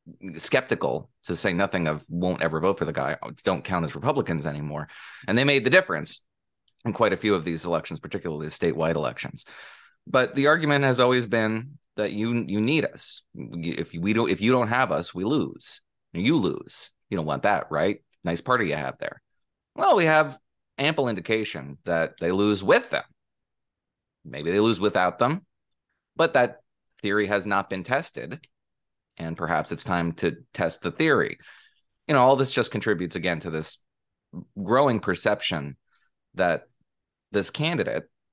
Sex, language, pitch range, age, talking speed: male, English, 85-120 Hz, 30-49, 170 wpm